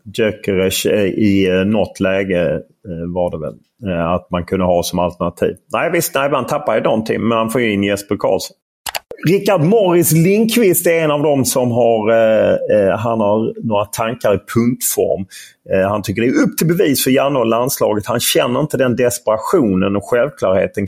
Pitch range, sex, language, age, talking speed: 95-125 Hz, male, Swedish, 30-49, 180 wpm